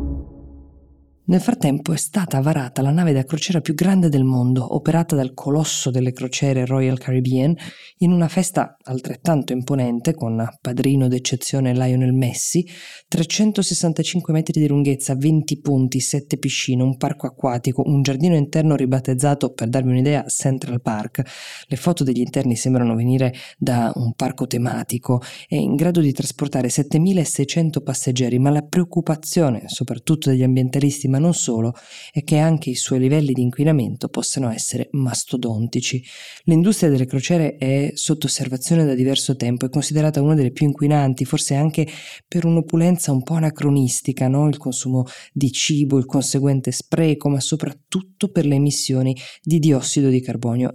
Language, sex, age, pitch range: Italian, female, 20-39, 130-155 Hz